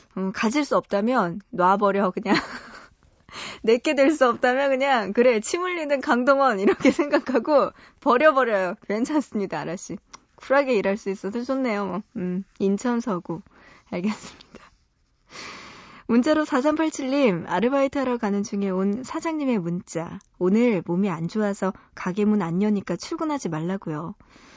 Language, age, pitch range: Korean, 20-39, 195-270 Hz